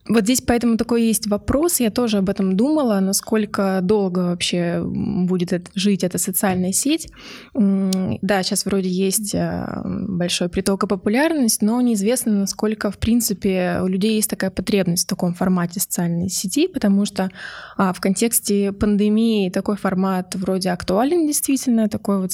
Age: 20-39